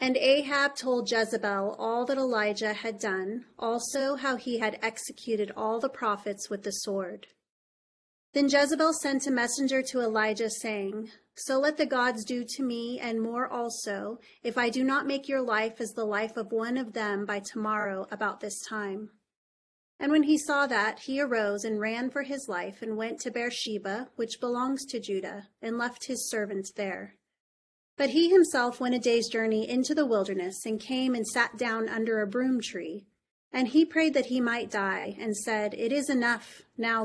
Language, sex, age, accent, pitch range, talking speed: English, female, 30-49, American, 215-255 Hz, 185 wpm